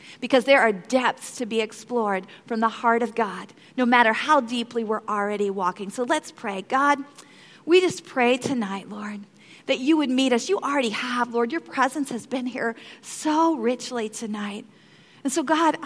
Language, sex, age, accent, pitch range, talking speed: English, female, 40-59, American, 230-300 Hz, 180 wpm